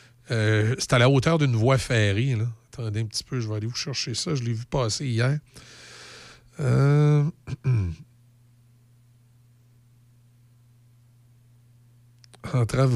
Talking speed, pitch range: 115 wpm, 120-150 Hz